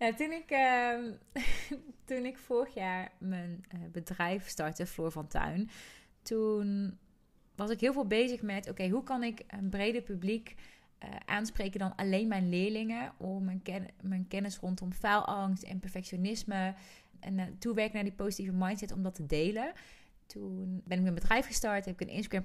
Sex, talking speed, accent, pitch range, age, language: female, 180 wpm, Dutch, 185-225 Hz, 30-49, Dutch